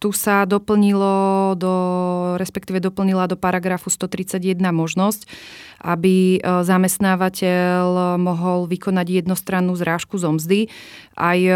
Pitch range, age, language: 175-190 Hz, 30-49, Slovak